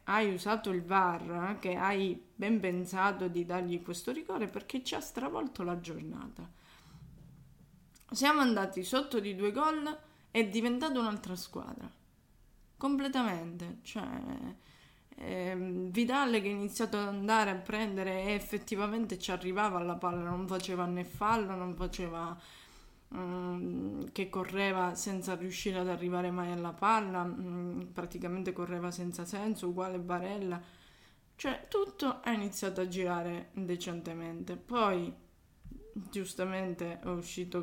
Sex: female